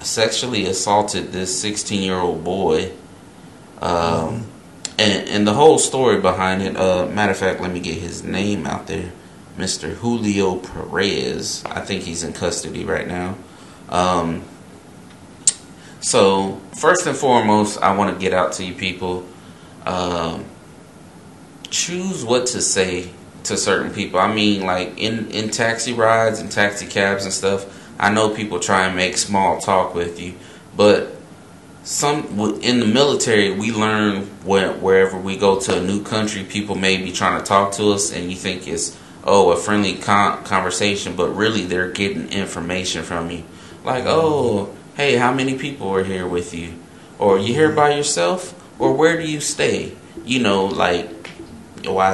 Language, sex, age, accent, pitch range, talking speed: English, male, 30-49, American, 90-105 Hz, 160 wpm